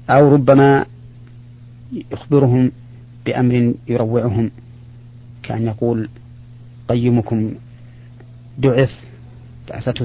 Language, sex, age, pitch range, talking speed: Arabic, male, 40-59, 120-125 Hz, 60 wpm